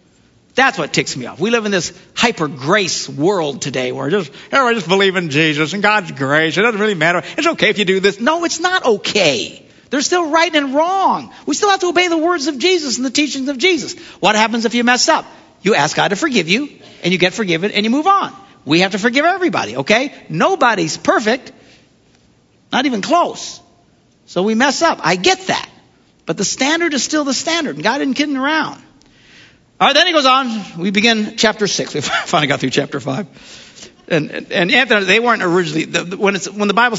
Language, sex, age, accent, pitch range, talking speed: English, male, 50-69, American, 165-265 Hz, 220 wpm